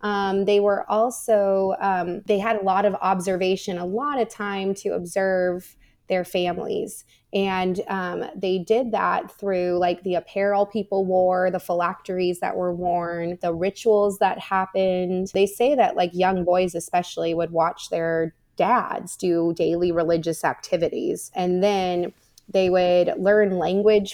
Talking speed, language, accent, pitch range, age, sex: 150 wpm, English, American, 180-200 Hz, 20-39, female